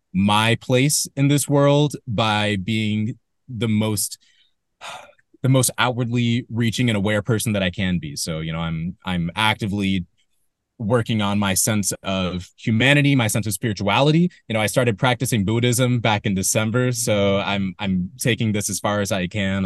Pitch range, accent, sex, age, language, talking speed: 100-130 Hz, American, male, 20-39, English, 170 wpm